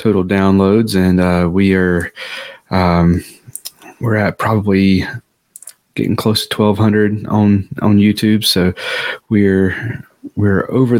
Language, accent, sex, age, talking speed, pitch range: English, American, male, 20-39, 115 wpm, 90-100 Hz